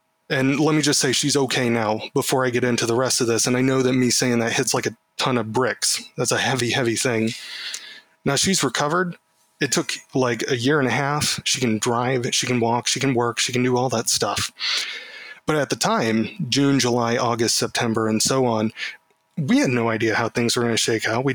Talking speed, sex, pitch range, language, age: 235 wpm, male, 115-140 Hz, English, 20-39